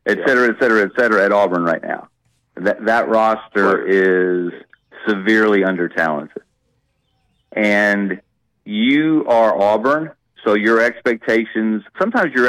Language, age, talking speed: English, 40-59, 120 wpm